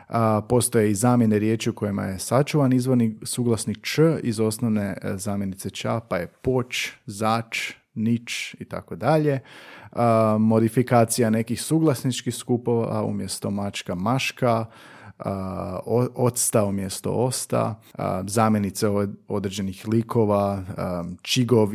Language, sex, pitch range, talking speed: Croatian, male, 100-125 Hz, 95 wpm